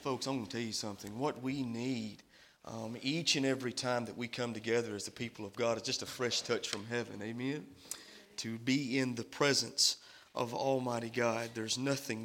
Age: 30-49